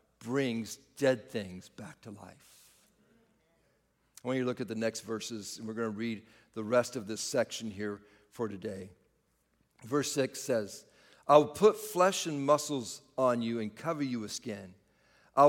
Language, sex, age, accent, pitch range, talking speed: English, male, 50-69, American, 120-200 Hz, 175 wpm